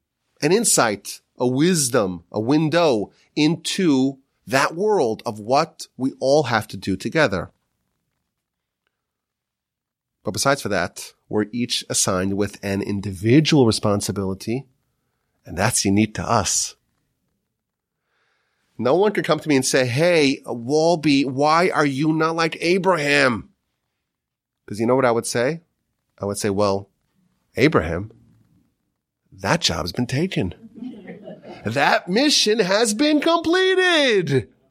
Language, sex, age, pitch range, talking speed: English, male, 30-49, 110-160 Hz, 125 wpm